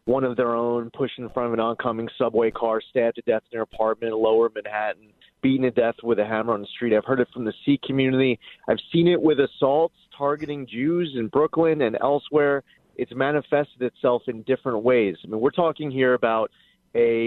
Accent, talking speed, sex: American, 210 wpm, male